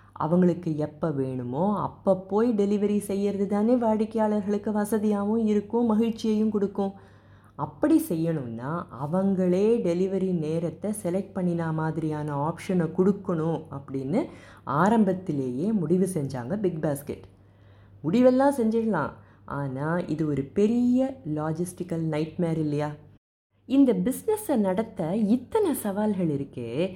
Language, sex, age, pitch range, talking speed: Tamil, female, 20-39, 155-220 Hz, 100 wpm